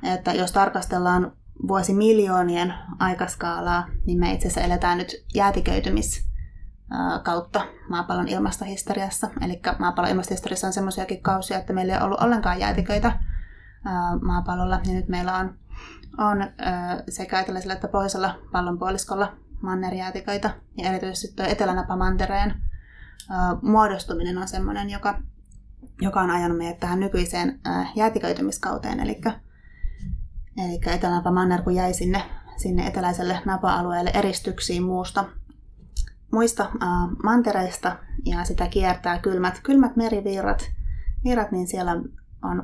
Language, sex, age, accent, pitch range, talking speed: Finnish, female, 20-39, native, 180-200 Hz, 105 wpm